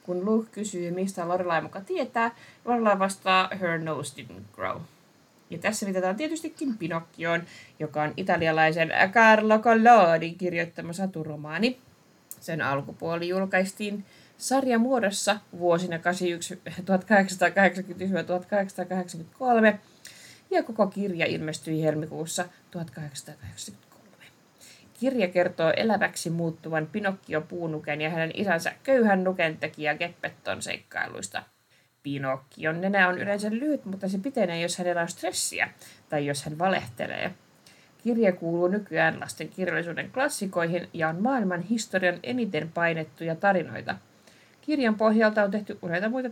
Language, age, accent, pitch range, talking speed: Finnish, 20-39, native, 160-205 Hz, 110 wpm